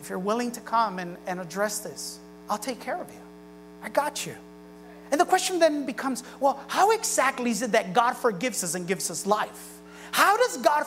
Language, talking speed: English, 210 wpm